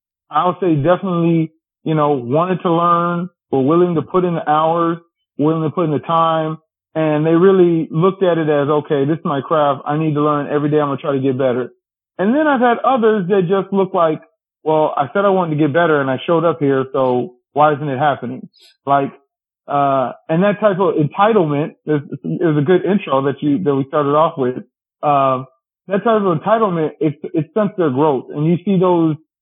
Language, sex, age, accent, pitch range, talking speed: English, male, 30-49, American, 145-180 Hz, 220 wpm